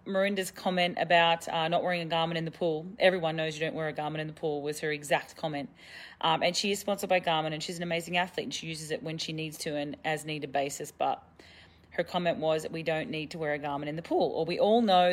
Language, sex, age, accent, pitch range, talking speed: English, female, 30-49, Australian, 155-190 Hz, 270 wpm